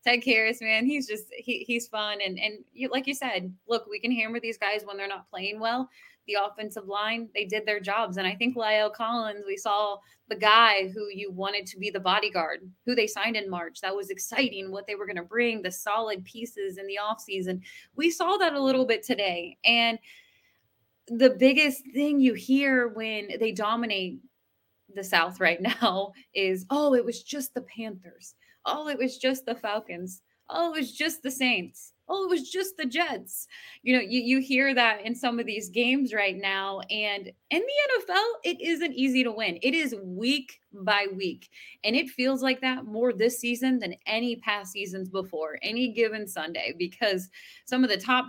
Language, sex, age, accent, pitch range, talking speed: English, female, 20-39, American, 200-255 Hz, 200 wpm